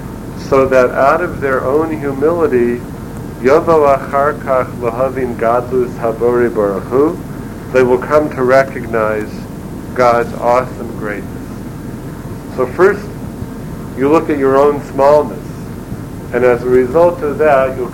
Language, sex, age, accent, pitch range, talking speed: English, male, 50-69, American, 120-140 Hz, 100 wpm